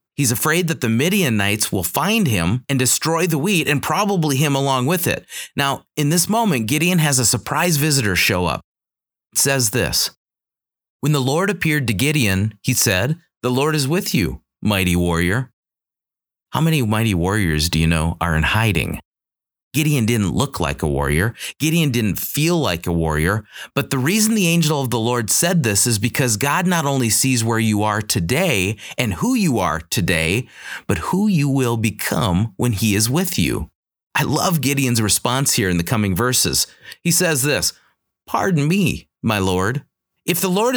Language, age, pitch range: English, 30-49, 105-160 Hz